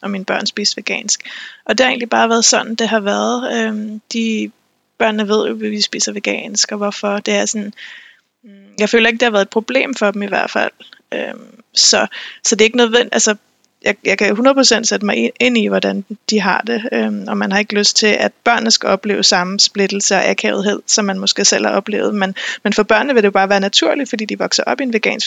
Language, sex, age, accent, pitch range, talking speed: Danish, female, 20-39, native, 200-230 Hz, 235 wpm